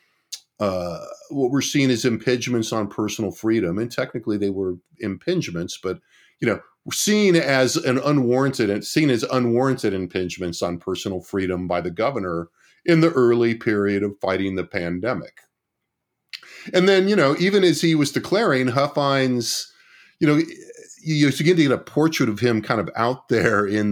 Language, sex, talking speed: English, male, 160 wpm